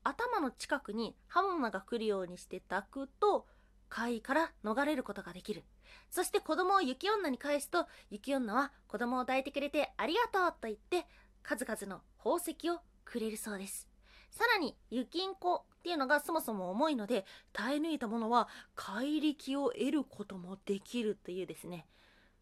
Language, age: Japanese, 20-39